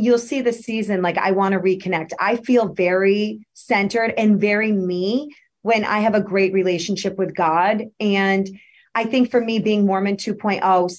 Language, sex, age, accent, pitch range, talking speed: English, female, 30-49, American, 185-210 Hz, 175 wpm